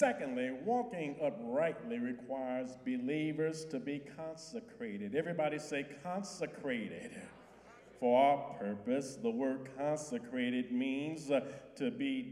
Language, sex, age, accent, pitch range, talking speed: English, male, 50-69, American, 140-235 Hz, 100 wpm